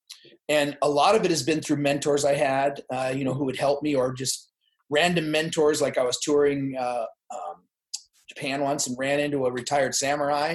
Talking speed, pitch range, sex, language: 205 wpm, 135-160 Hz, male, English